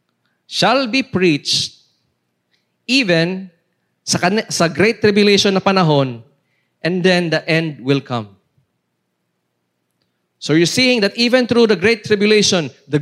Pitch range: 130-195 Hz